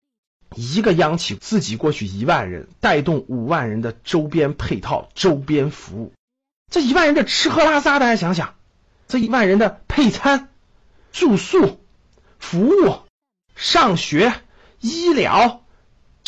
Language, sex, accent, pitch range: Chinese, male, native, 135-220 Hz